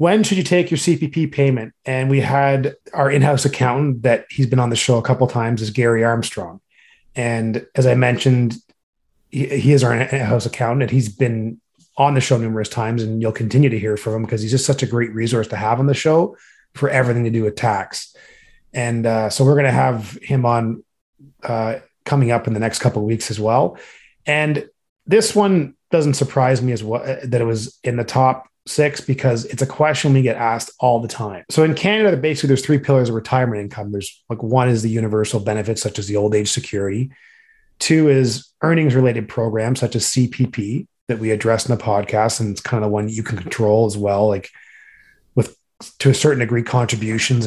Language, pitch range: English, 110-135 Hz